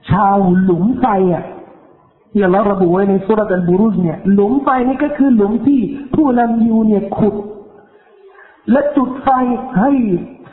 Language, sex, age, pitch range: Thai, male, 50-69, 195-260 Hz